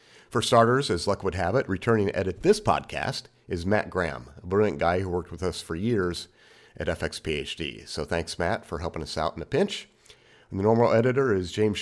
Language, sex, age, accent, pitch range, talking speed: English, male, 40-59, American, 80-105 Hz, 215 wpm